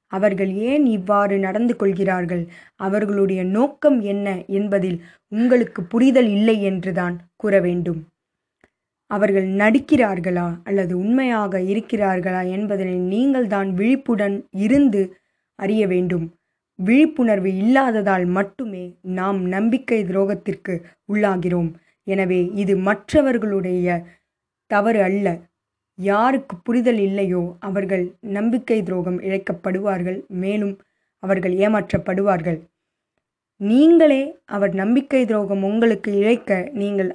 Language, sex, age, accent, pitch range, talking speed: Tamil, female, 20-39, native, 190-225 Hz, 90 wpm